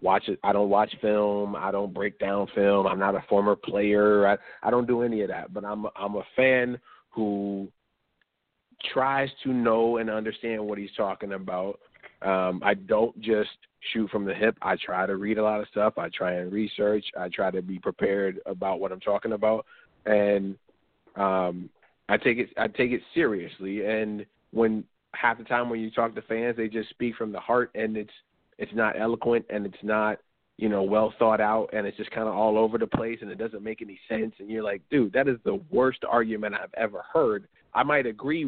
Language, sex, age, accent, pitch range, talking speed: English, male, 30-49, American, 100-110 Hz, 215 wpm